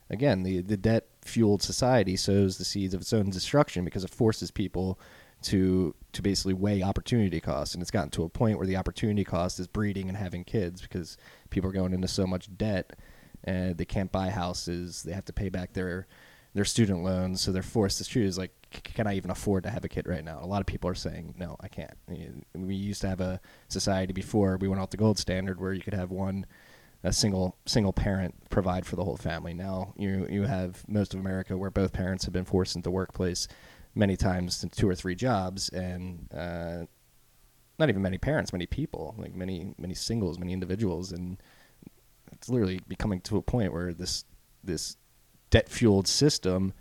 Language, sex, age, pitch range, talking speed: English, male, 20-39, 90-100 Hz, 205 wpm